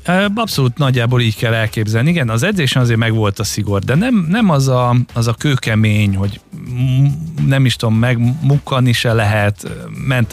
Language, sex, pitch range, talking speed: Hungarian, male, 105-135 Hz, 170 wpm